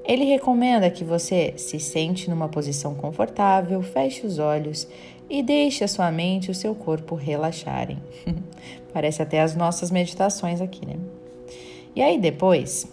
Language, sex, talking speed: Portuguese, female, 150 wpm